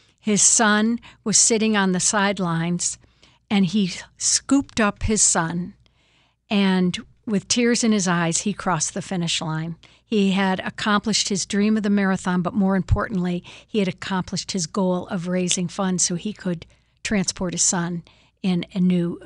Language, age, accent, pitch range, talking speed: English, 60-79, American, 185-215 Hz, 160 wpm